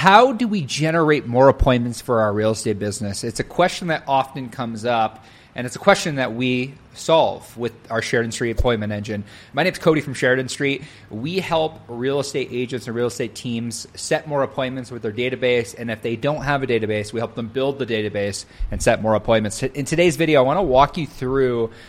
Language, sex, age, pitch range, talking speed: English, male, 30-49, 115-140 Hz, 215 wpm